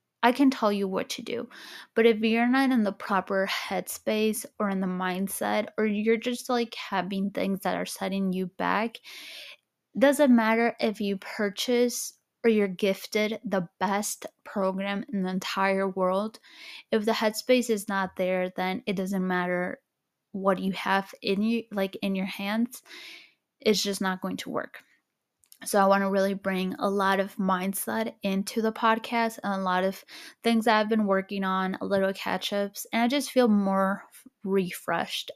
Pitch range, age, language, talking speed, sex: 195-225 Hz, 20-39, English, 175 wpm, female